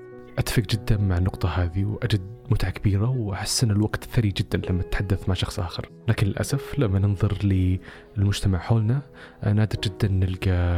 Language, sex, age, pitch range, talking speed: Arabic, male, 20-39, 95-115 Hz, 150 wpm